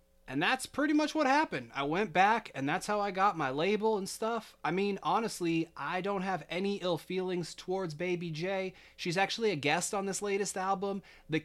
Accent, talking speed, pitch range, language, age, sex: American, 205 wpm, 145-180 Hz, English, 20-39, male